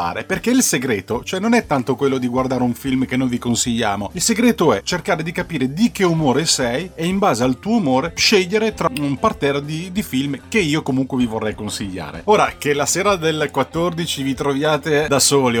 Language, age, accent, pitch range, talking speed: Italian, 30-49, native, 125-190 Hz, 210 wpm